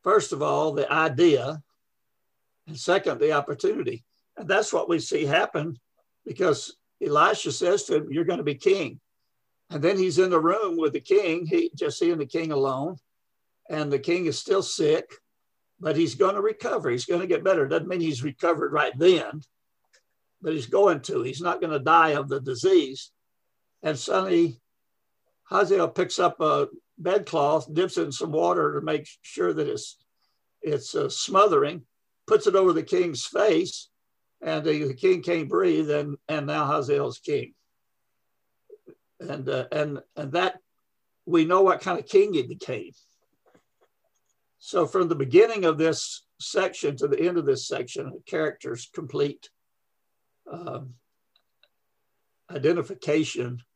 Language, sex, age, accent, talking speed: English, male, 60-79, American, 160 wpm